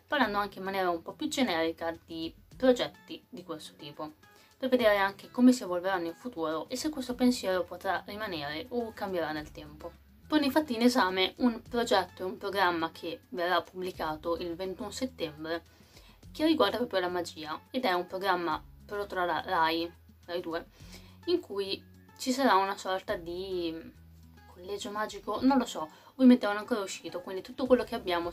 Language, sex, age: Italian, female, 20-39